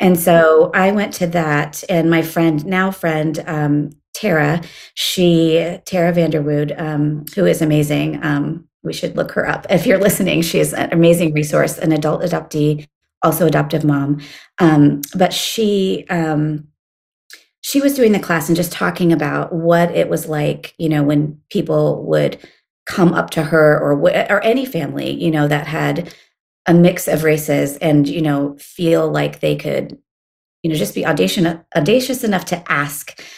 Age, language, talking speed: 30-49, English, 170 wpm